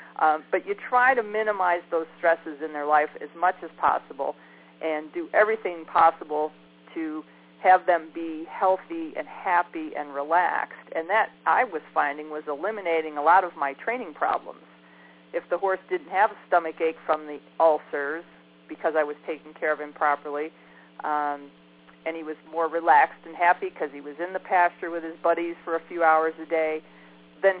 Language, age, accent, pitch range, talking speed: English, 40-59, American, 145-175 Hz, 185 wpm